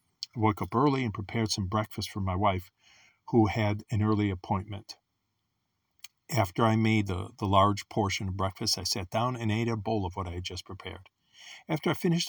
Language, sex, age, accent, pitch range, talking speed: English, male, 50-69, American, 100-135 Hz, 200 wpm